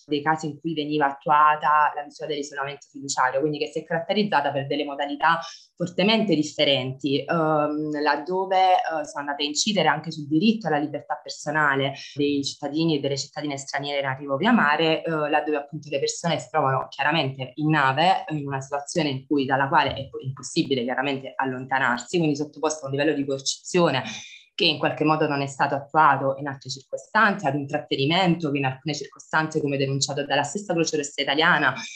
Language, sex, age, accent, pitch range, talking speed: Italian, female, 20-39, native, 140-165 Hz, 180 wpm